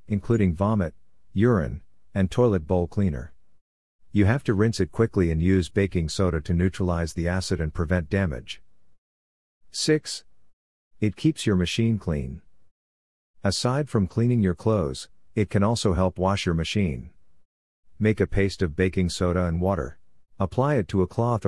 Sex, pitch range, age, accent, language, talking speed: male, 85-100 Hz, 50-69, American, English, 155 wpm